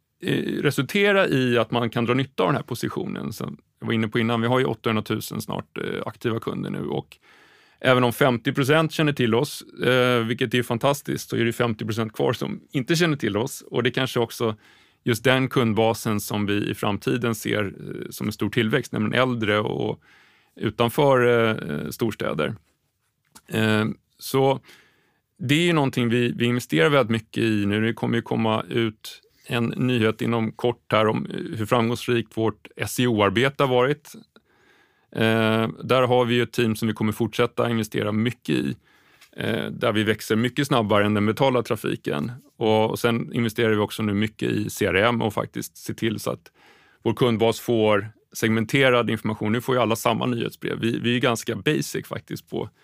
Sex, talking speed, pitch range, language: male, 170 wpm, 110-125 Hz, English